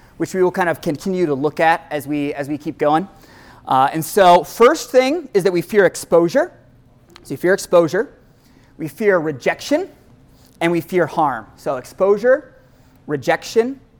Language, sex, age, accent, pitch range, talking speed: English, male, 30-49, American, 140-180 Hz, 165 wpm